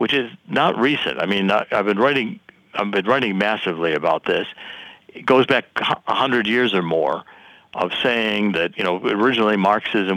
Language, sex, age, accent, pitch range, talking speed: English, male, 60-79, American, 95-115 Hz, 175 wpm